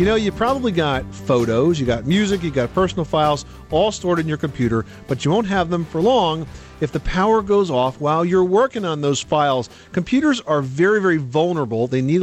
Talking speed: 210 wpm